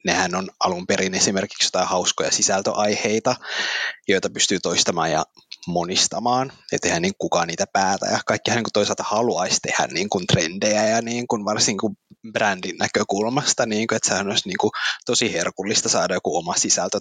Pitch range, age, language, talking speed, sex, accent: 105-130 Hz, 20-39, Finnish, 160 wpm, male, native